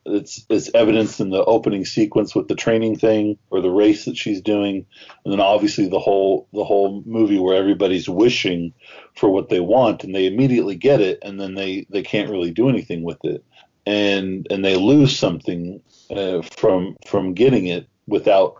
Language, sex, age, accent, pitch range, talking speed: English, male, 40-59, American, 95-110 Hz, 185 wpm